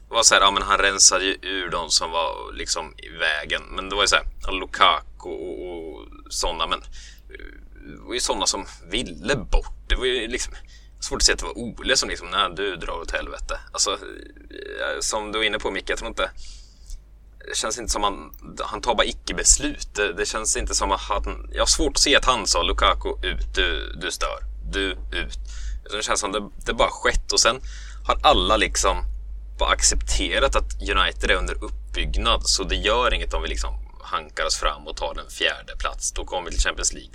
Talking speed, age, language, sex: 210 wpm, 20-39, Swedish, male